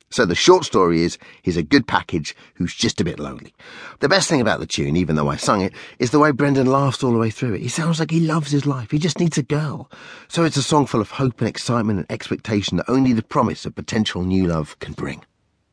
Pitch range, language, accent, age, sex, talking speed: 80-125 Hz, English, British, 40-59, male, 260 wpm